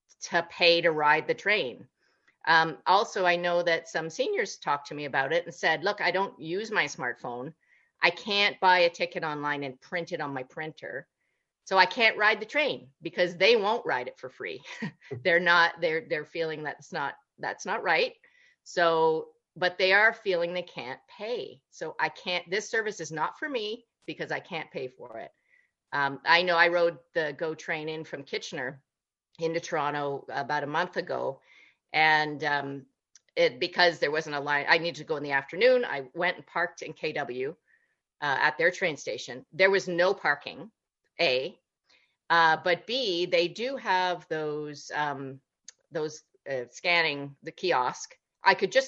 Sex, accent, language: female, American, English